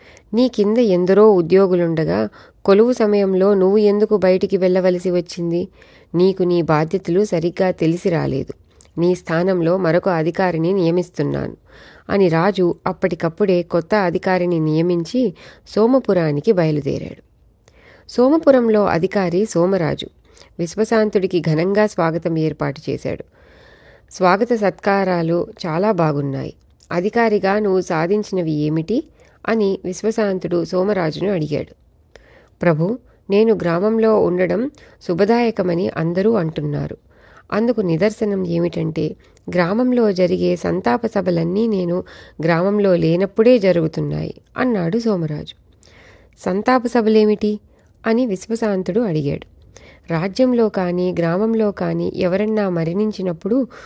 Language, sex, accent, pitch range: Telugu, female, native, 170-210 Hz